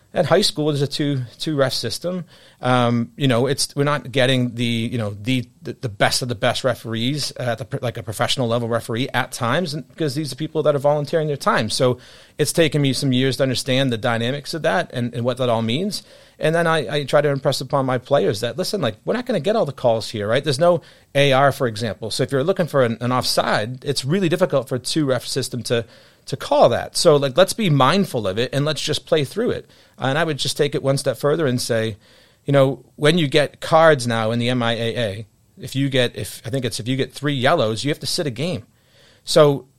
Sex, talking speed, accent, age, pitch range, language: male, 260 wpm, American, 30-49, 120-145 Hz, English